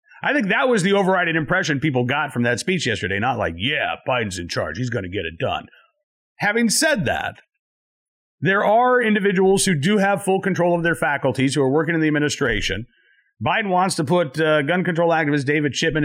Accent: American